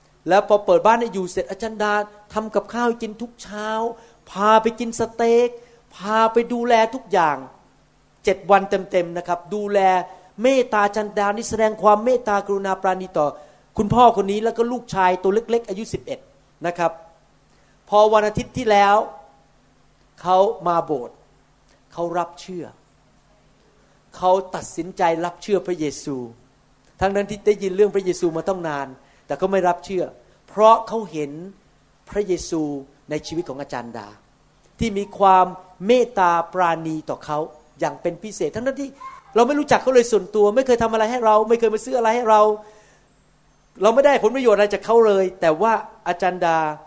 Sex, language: male, Thai